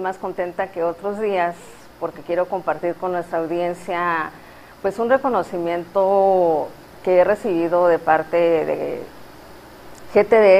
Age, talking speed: 40-59, 120 wpm